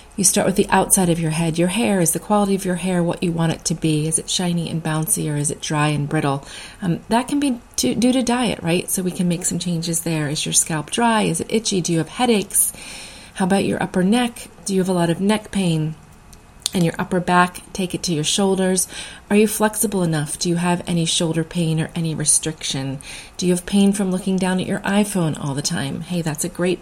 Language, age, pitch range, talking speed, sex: English, 30-49, 165-195 Hz, 250 wpm, female